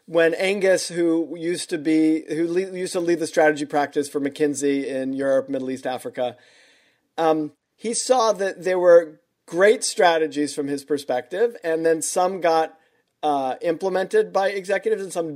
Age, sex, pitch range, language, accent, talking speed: 40-59, male, 145-175 Hz, English, American, 160 wpm